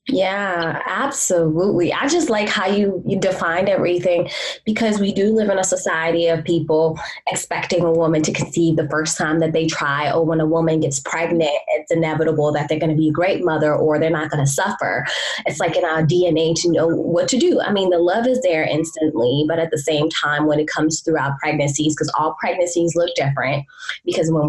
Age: 20-39